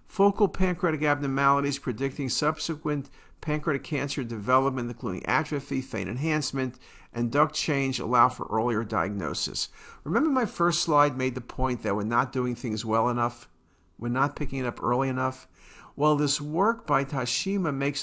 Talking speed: 155 wpm